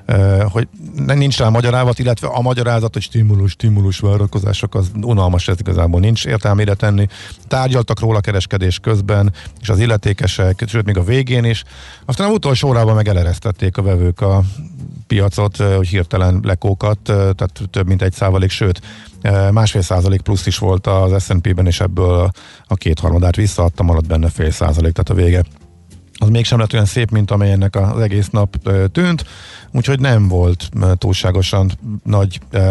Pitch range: 95-110 Hz